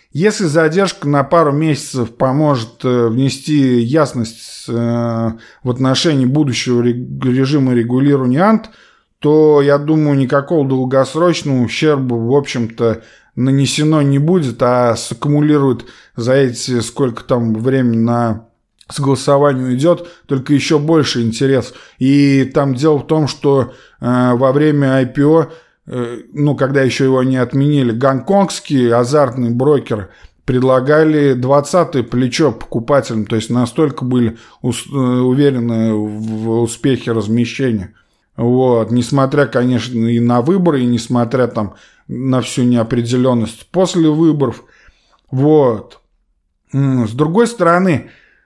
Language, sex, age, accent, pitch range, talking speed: Russian, male, 20-39, native, 120-145 Hz, 110 wpm